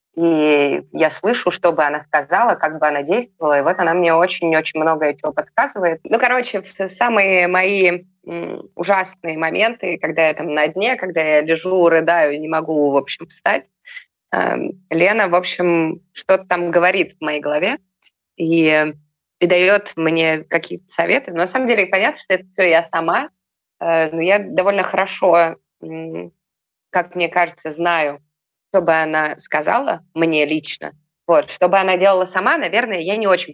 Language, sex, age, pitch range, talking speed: Russian, female, 20-39, 150-185 Hz, 155 wpm